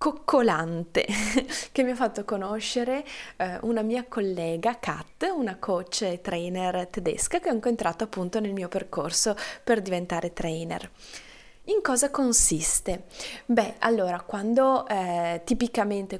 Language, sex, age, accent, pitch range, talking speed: Italian, female, 20-39, native, 190-245 Hz, 125 wpm